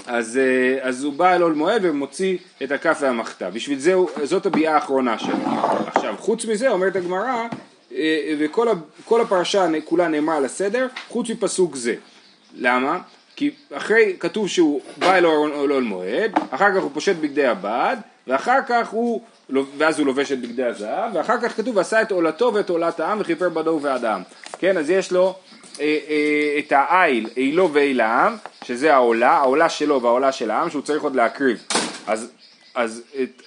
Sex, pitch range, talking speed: male, 130-185 Hz, 155 wpm